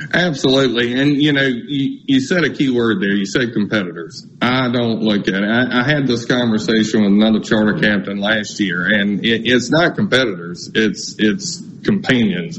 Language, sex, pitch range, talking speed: English, male, 110-150 Hz, 180 wpm